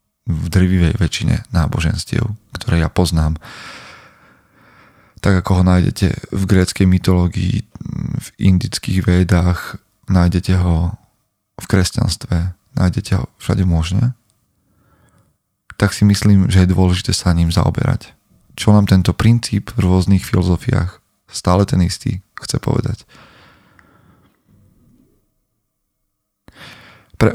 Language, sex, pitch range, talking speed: Slovak, male, 90-105 Hz, 105 wpm